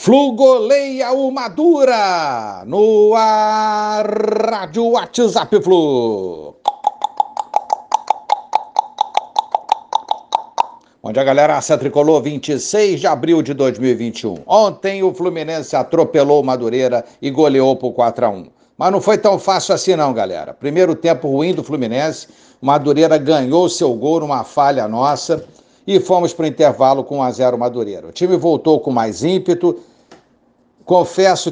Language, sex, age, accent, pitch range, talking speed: Portuguese, male, 60-79, Brazilian, 135-195 Hz, 120 wpm